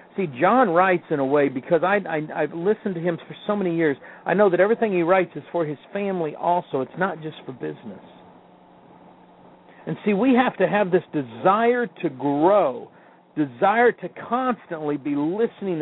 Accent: American